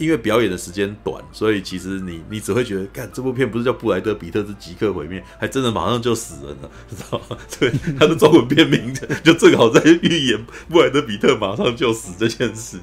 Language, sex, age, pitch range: Chinese, male, 30-49, 95-135 Hz